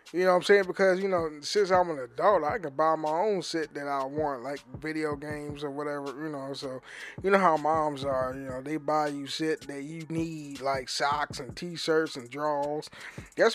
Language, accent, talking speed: English, American, 220 wpm